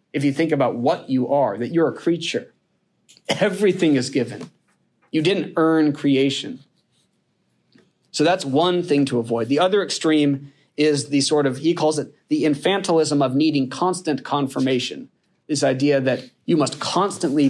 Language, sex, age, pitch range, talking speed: English, male, 30-49, 125-150 Hz, 160 wpm